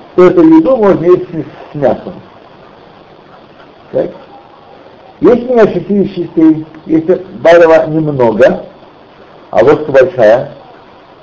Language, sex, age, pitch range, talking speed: Russian, male, 60-79, 135-190 Hz, 95 wpm